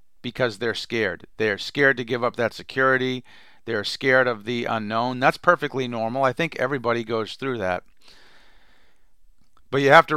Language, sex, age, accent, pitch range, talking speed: English, male, 40-59, American, 115-135 Hz, 165 wpm